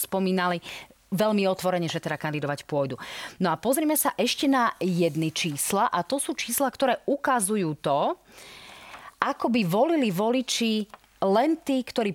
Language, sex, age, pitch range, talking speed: Slovak, female, 30-49, 165-225 Hz, 145 wpm